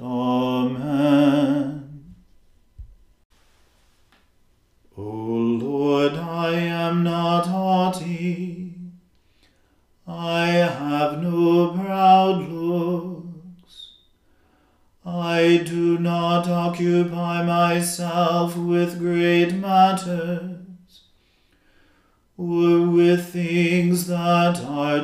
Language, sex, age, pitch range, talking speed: English, male, 40-59, 170-175 Hz, 60 wpm